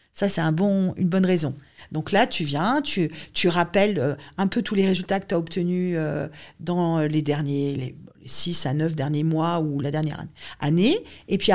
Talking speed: 185 wpm